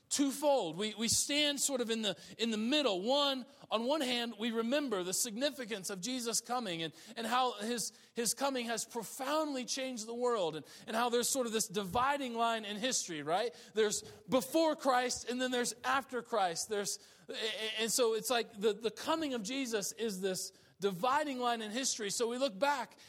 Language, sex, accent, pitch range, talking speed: English, male, American, 170-245 Hz, 190 wpm